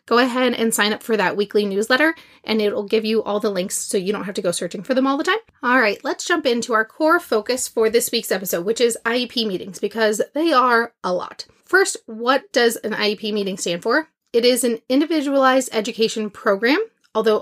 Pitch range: 210-265 Hz